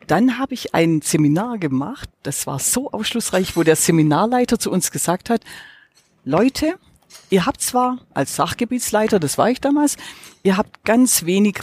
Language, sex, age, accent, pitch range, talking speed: German, female, 50-69, German, 165-250 Hz, 160 wpm